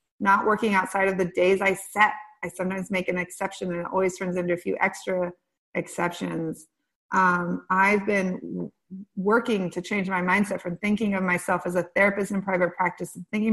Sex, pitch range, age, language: female, 180-210 Hz, 30-49, English